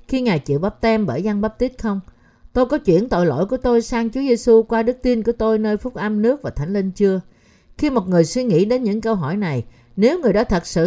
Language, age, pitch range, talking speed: Vietnamese, 50-69, 160-230 Hz, 265 wpm